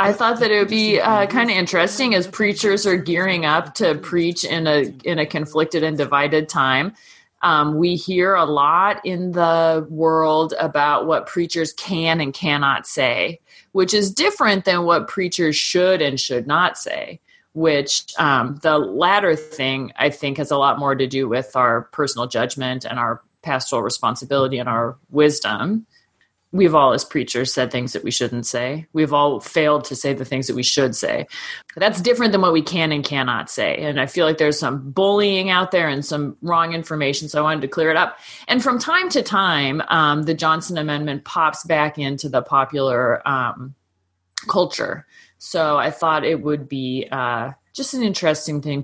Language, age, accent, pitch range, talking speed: English, 30-49, American, 140-180 Hz, 185 wpm